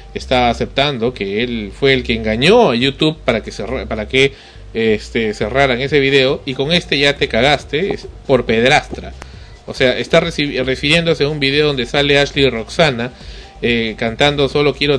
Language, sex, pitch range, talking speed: Spanish, male, 120-160 Hz, 165 wpm